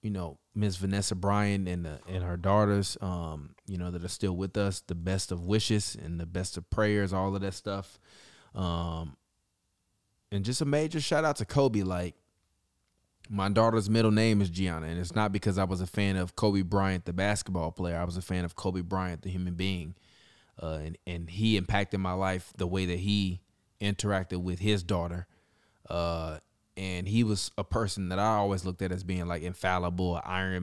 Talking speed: 200 wpm